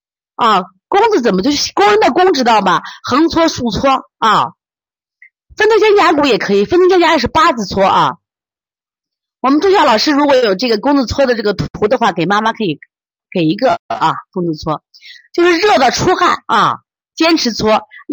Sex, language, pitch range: female, Chinese, 185-285 Hz